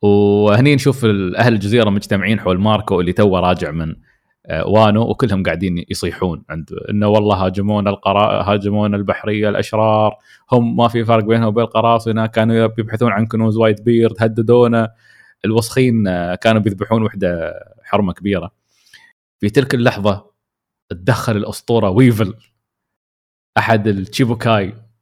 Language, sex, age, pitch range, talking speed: Arabic, male, 20-39, 100-120 Hz, 120 wpm